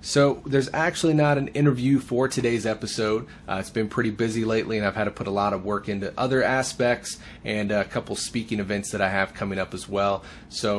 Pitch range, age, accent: 100-130 Hz, 30-49, American